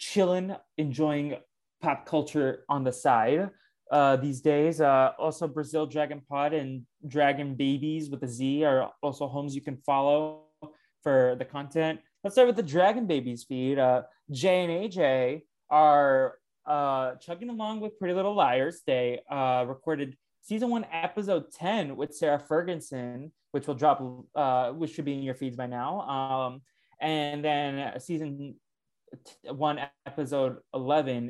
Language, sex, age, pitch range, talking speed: English, male, 20-39, 130-165 Hz, 150 wpm